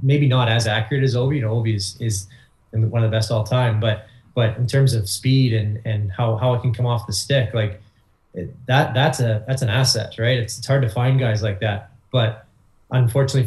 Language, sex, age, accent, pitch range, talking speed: English, male, 20-39, American, 110-125 Hz, 230 wpm